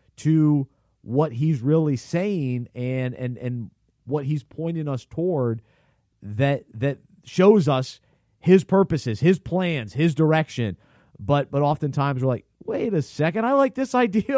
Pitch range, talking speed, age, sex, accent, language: 120-165 Hz, 145 wpm, 30-49, male, American, English